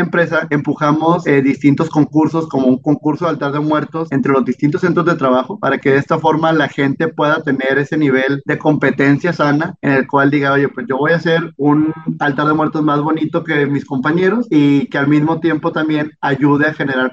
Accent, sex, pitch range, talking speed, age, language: Mexican, male, 135-160 Hz, 210 wpm, 30-49, Spanish